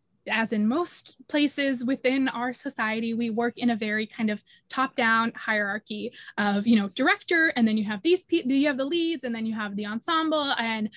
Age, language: 20-39, English